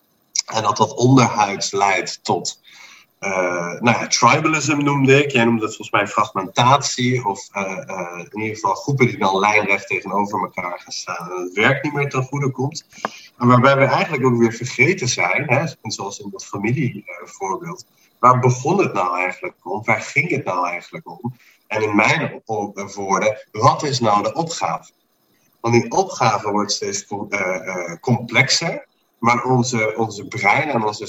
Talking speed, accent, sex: 160 wpm, Dutch, male